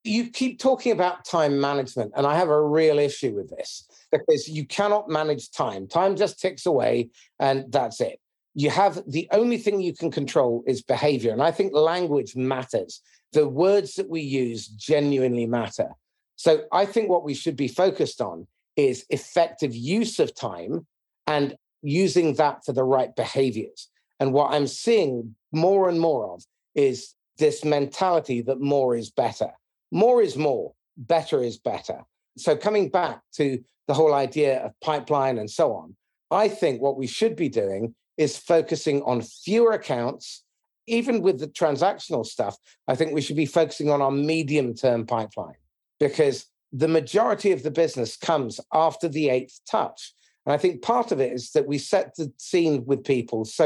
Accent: British